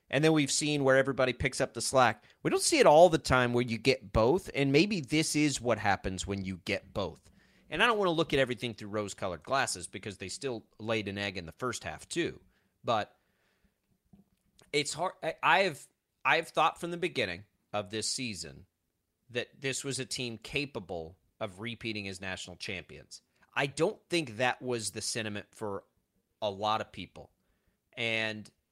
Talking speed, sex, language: 190 wpm, male, English